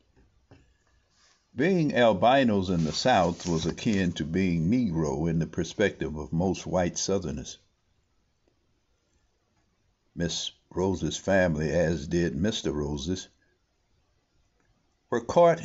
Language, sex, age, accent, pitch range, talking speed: English, male, 60-79, American, 80-105 Hz, 100 wpm